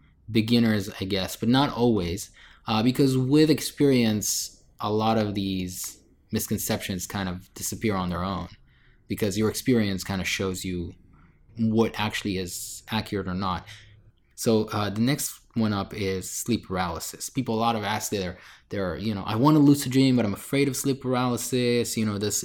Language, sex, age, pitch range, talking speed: English, male, 20-39, 100-120 Hz, 175 wpm